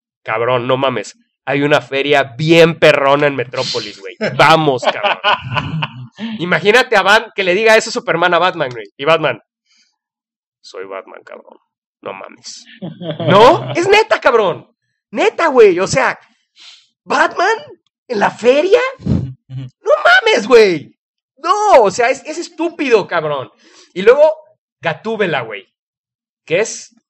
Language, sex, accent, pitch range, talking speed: English, male, Mexican, 140-230 Hz, 130 wpm